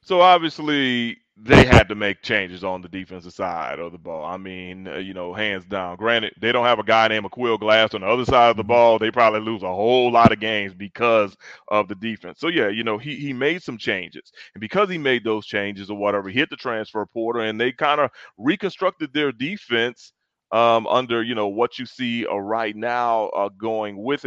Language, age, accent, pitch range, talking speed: English, 30-49, American, 105-120 Hz, 225 wpm